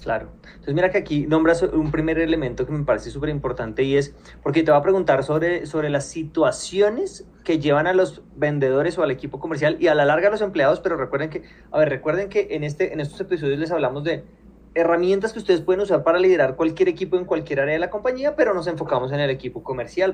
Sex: male